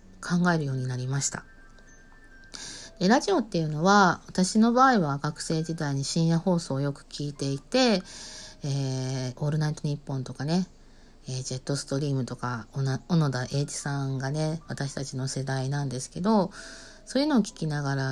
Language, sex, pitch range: Japanese, female, 130-170 Hz